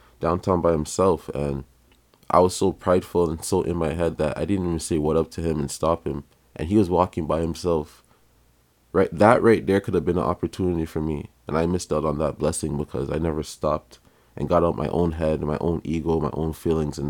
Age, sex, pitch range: 20-39, male, 75-90 Hz